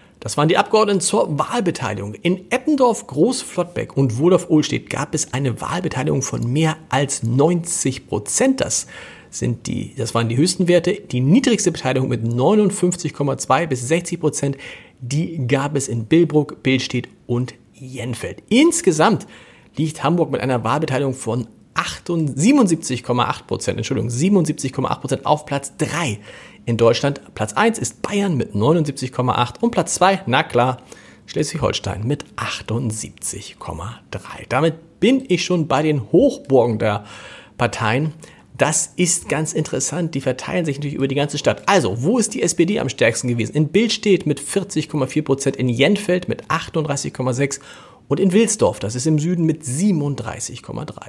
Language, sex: German, male